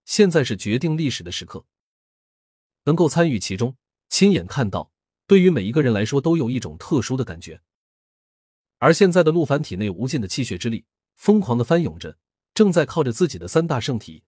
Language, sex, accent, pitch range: Chinese, male, native, 100-160 Hz